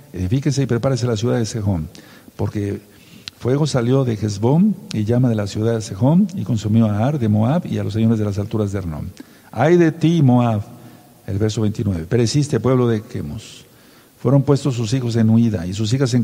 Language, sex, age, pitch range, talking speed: Spanish, male, 50-69, 110-135 Hz, 205 wpm